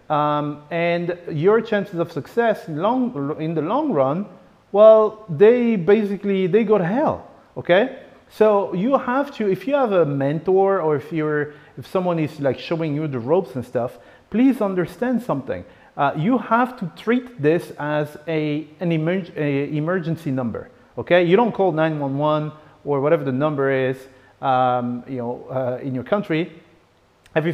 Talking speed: 165 wpm